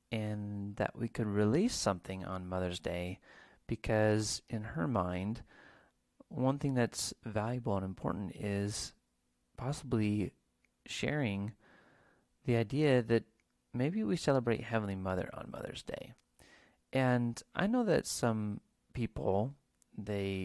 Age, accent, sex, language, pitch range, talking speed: 30-49, American, male, English, 95-130 Hz, 115 wpm